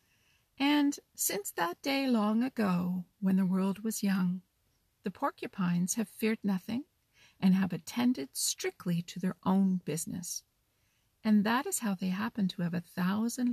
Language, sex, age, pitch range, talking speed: English, female, 50-69, 180-235 Hz, 150 wpm